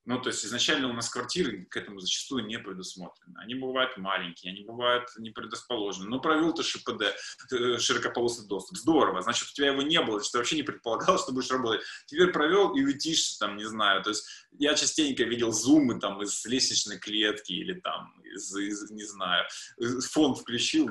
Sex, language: male, Russian